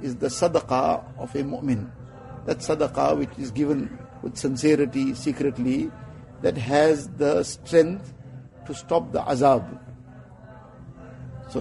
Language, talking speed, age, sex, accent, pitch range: English, 120 wpm, 50-69, male, Indian, 130-155 Hz